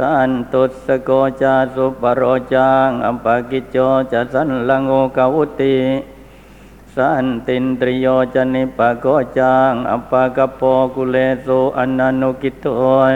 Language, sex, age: Thai, male, 60-79